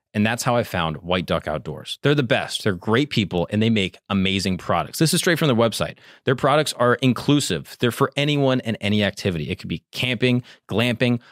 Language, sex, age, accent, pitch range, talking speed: English, male, 30-49, American, 95-125 Hz, 210 wpm